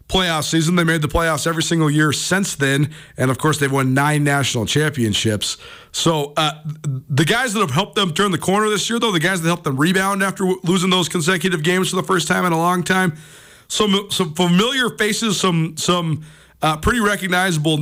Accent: American